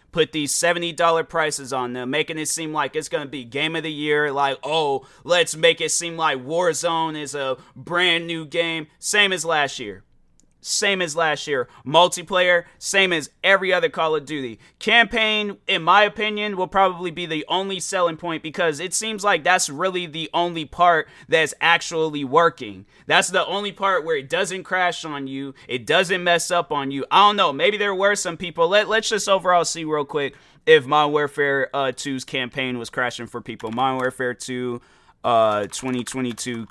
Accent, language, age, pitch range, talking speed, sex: American, English, 20-39, 125-185 Hz, 190 wpm, male